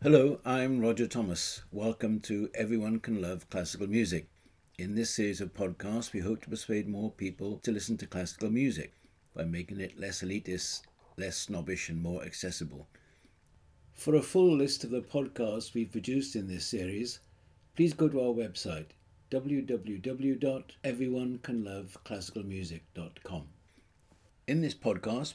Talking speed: 135 wpm